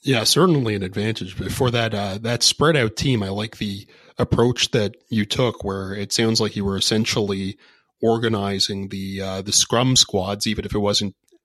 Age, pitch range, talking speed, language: 30-49, 100-120 Hz, 185 wpm, English